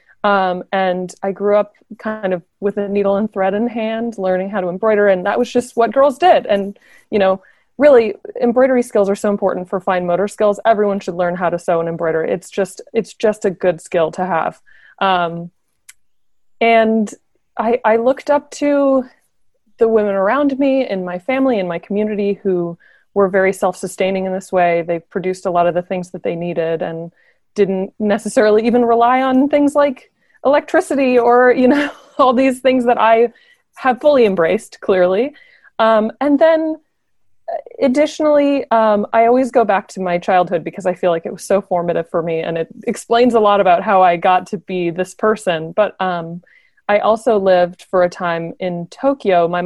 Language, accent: English, American